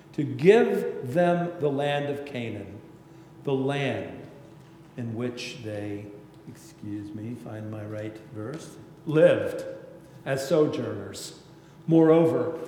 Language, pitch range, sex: English, 135-190 Hz, male